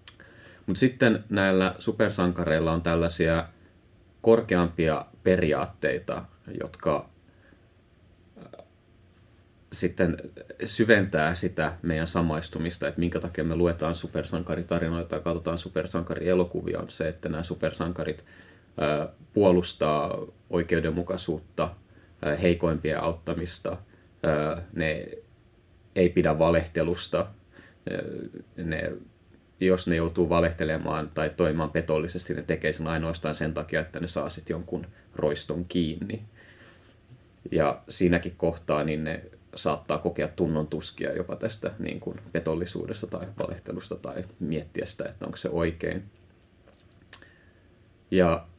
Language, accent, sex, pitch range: Finnish, native, male, 85-95 Hz